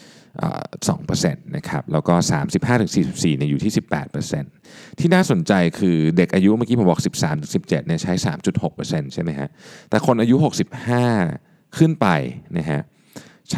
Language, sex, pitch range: Thai, male, 75-130 Hz